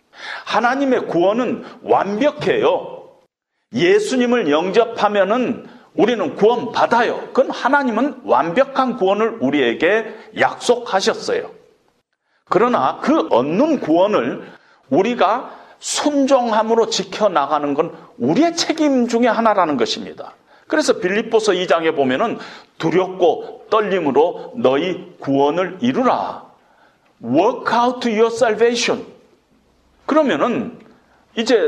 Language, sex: Korean, male